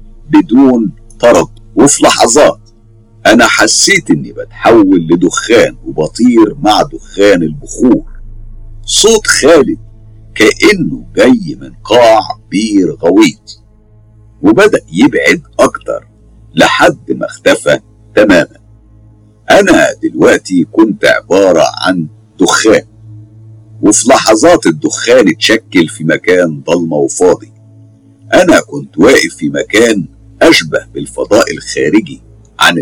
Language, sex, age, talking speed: Arabic, male, 50-69, 95 wpm